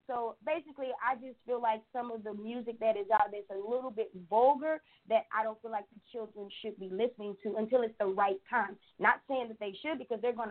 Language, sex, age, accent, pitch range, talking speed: English, female, 20-39, American, 225-285 Hz, 245 wpm